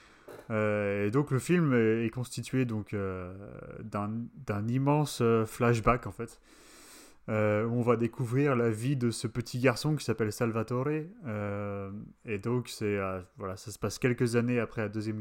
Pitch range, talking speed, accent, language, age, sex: 105-125 Hz, 170 wpm, French, French, 30-49, male